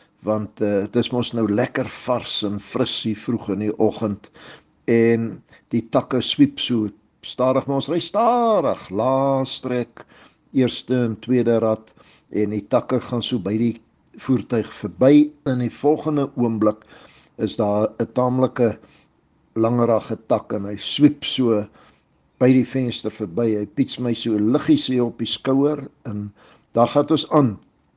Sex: male